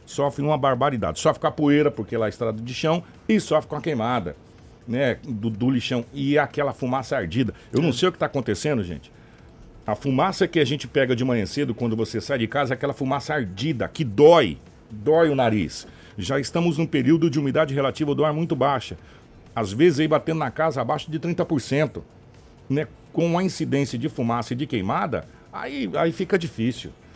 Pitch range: 115-155 Hz